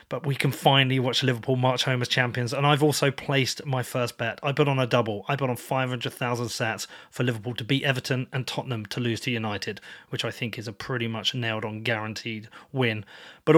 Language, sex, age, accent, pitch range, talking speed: English, male, 30-49, British, 120-145 Hz, 220 wpm